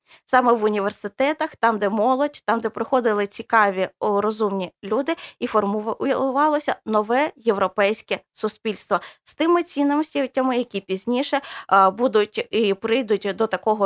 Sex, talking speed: female, 120 wpm